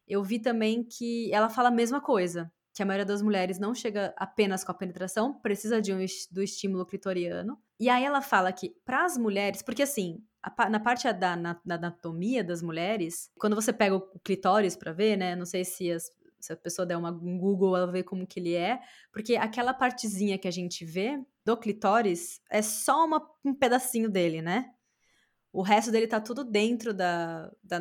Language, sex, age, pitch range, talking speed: Portuguese, female, 20-39, 180-220 Hz, 200 wpm